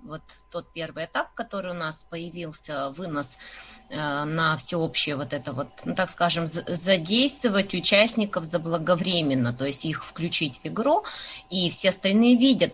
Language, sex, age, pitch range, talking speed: Russian, female, 20-39, 165-210 Hz, 145 wpm